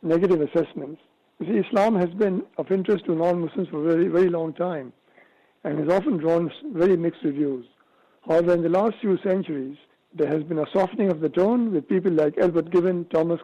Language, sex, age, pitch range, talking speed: English, male, 60-79, 160-205 Hz, 195 wpm